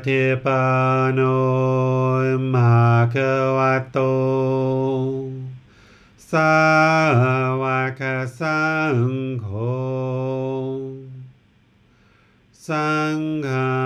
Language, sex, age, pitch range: English, male, 50-69, 120-135 Hz